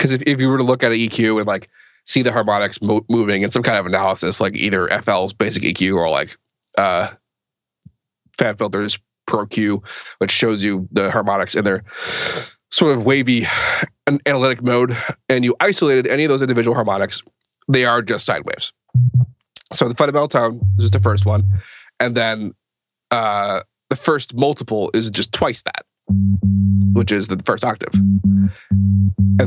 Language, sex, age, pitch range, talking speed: English, male, 20-39, 100-125 Hz, 165 wpm